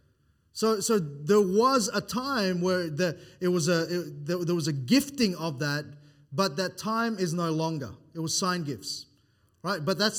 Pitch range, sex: 160-205 Hz, male